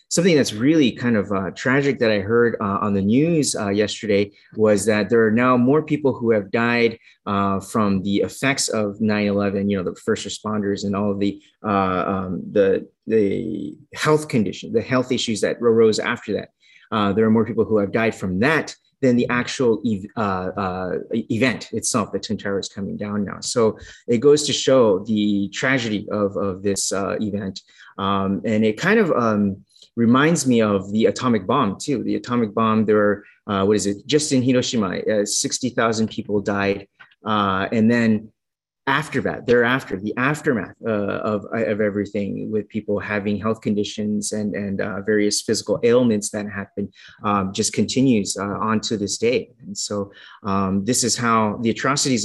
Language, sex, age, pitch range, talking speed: English, male, 30-49, 100-125 Hz, 185 wpm